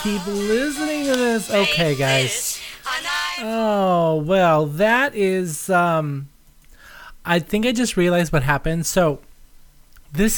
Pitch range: 160-220 Hz